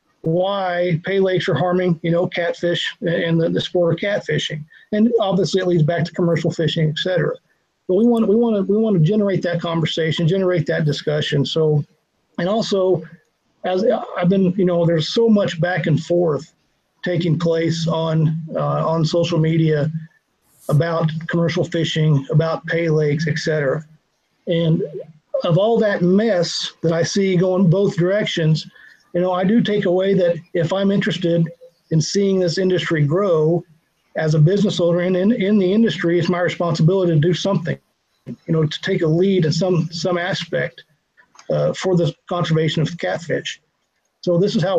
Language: English